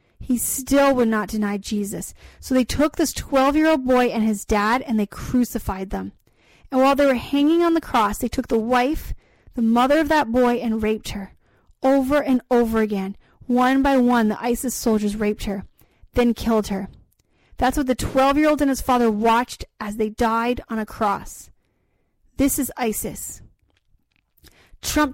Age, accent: 30-49, American